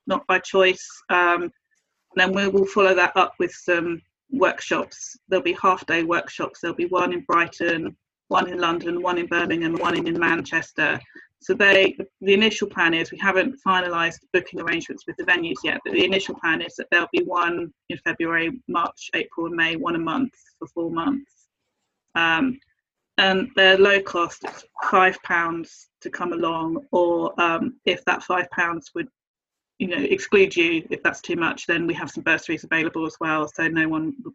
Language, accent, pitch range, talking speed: English, British, 165-275 Hz, 185 wpm